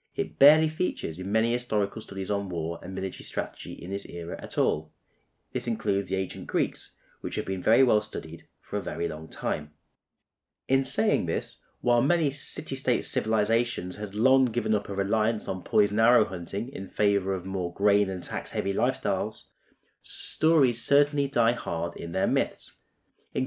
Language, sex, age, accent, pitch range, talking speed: English, male, 30-49, British, 100-135 Hz, 170 wpm